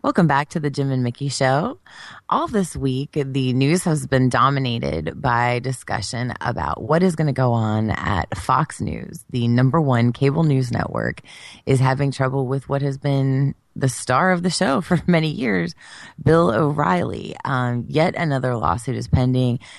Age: 20-39